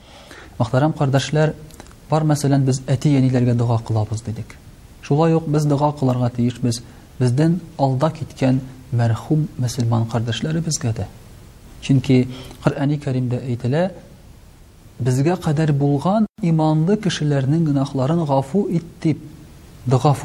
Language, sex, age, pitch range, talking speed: Russian, male, 40-59, 120-155 Hz, 105 wpm